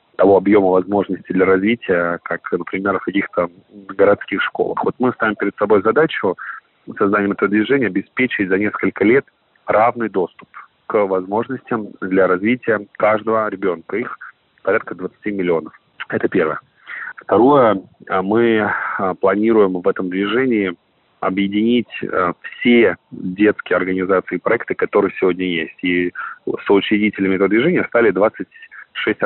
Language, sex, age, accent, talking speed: Russian, male, 30-49, native, 125 wpm